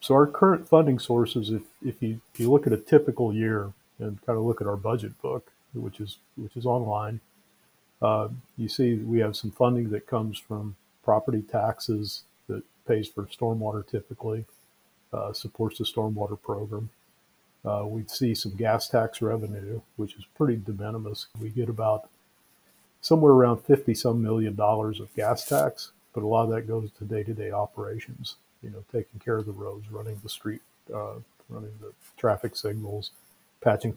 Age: 50-69